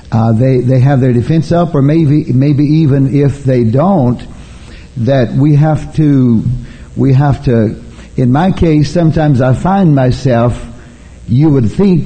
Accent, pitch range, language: American, 120-145 Hz, English